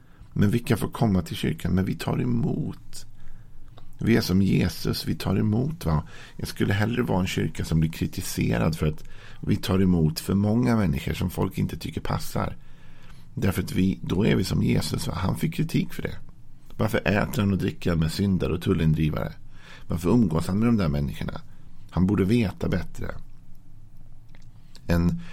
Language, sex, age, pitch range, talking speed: Swedish, male, 50-69, 80-110 Hz, 180 wpm